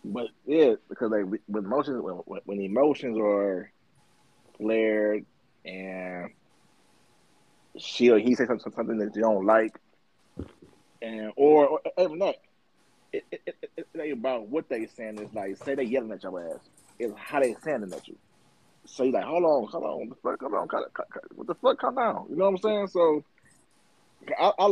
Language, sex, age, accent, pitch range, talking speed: English, male, 30-49, American, 110-160 Hz, 180 wpm